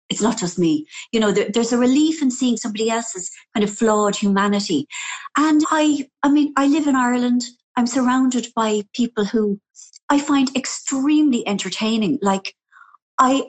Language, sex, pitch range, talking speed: English, female, 200-260 Hz, 160 wpm